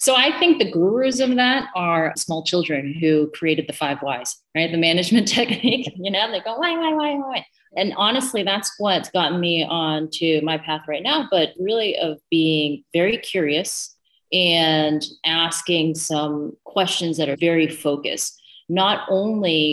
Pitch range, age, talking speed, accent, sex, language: 155-185 Hz, 30-49, 165 wpm, American, female, English